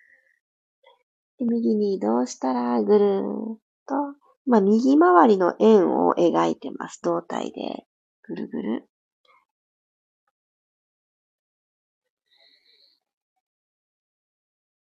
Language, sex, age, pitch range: Japanese, female, 40-59, 175-275 Hz